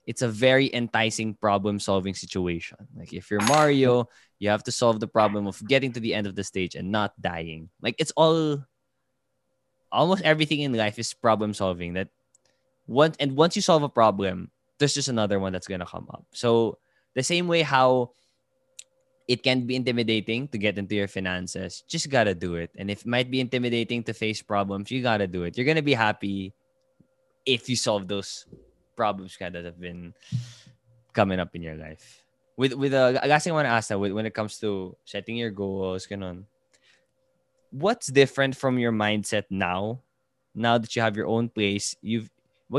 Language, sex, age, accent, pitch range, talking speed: English, male, 20-39, Filipino, 100-130 Hz, 185 wpm